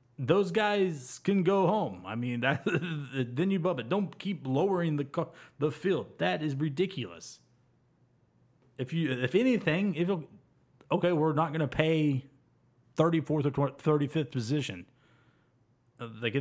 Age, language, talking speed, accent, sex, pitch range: 30-49, English, 130 wpm, American, male, 130-185 Hz